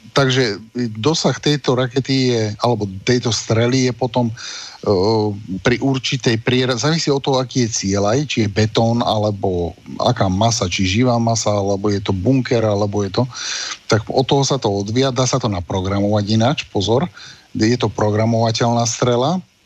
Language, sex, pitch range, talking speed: Slovak, male, 105-130 Hz, 160 wpm